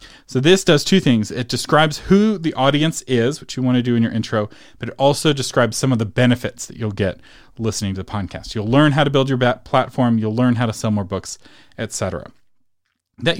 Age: 30-49